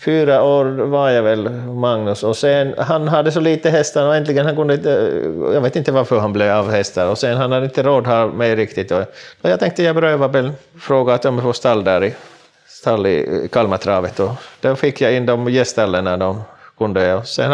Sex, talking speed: male, 220 wpm